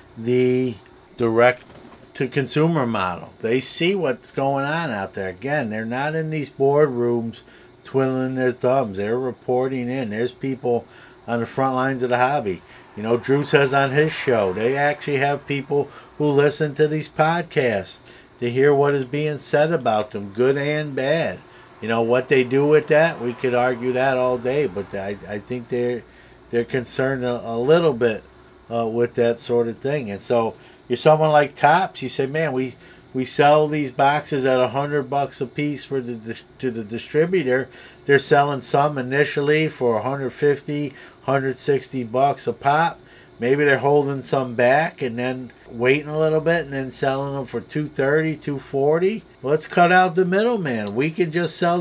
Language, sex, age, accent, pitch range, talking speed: English, male, 50-69, American, 125-155 Hz, 175 wpm